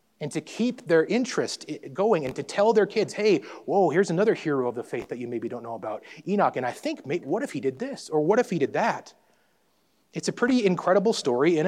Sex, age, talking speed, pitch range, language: male, 30-49, 235 wpm, 130-180 Hz, English